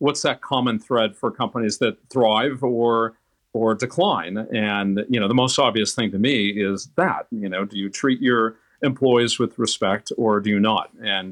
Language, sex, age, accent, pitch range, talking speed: English, male, 50-69, American, 100-125 Hz, 190 wpm